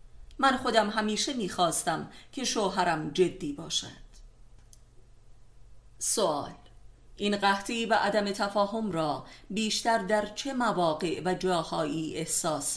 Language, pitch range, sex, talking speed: Persian, 145-210 Hz, female, 105 wpm